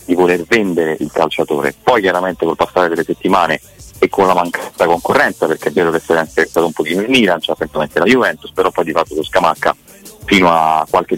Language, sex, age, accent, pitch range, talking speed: Italian, male, 30-49, native, 85-100 Hz, 220 wpm